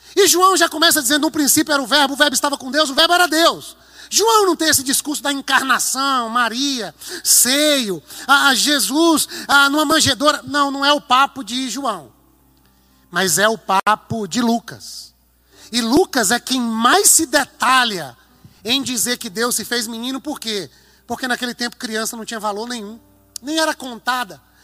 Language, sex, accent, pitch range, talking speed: Portuguese, male, Brazilian, 215-280 Hz, 175 wpm